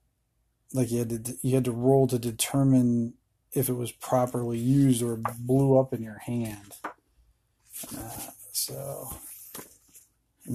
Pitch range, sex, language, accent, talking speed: 120-130 Hz, male, English, American, 135 wpm